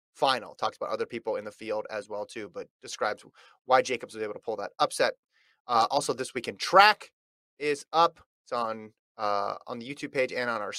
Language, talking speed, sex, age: English, 210 wpm, male, 30-49